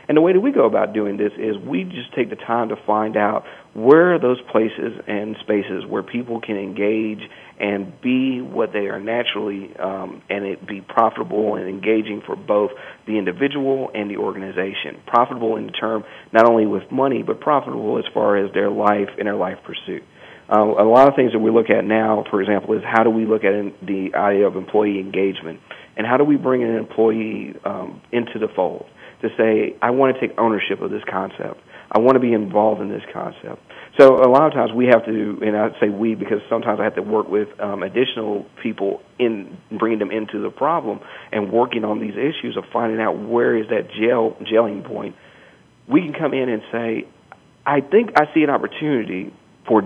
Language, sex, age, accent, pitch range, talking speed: English, male, 40-59, American, 105-120 Hz, 210 wpm